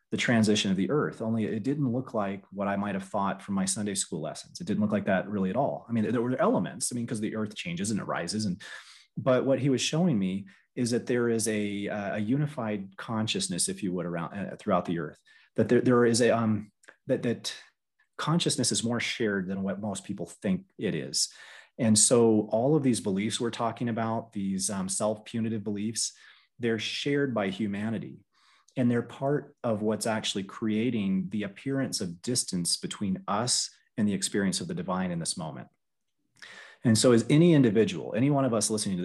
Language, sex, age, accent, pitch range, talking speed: English, male, 30-49, American, 100-130 Hz, 205 wpm